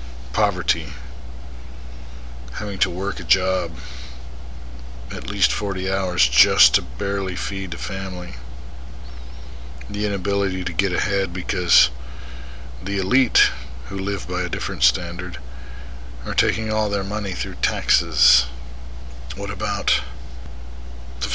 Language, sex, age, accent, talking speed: English, male, 50-69, American, 110 wpm